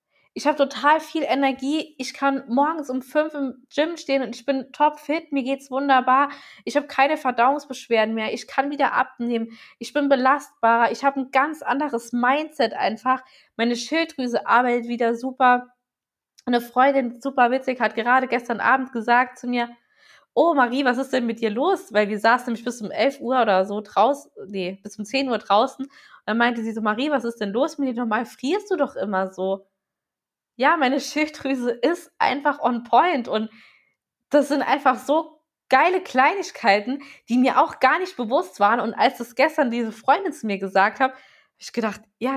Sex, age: female, 20-39